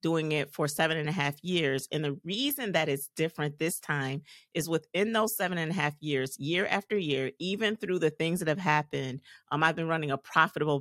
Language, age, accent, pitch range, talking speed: English, 40-59, American, 145-175 Hz, 220 wpm